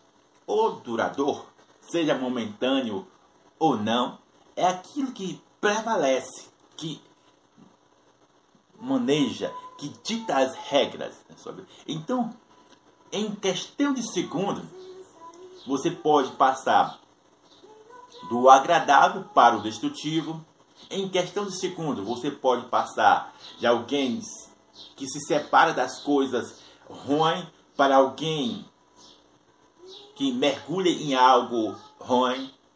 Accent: Brazilian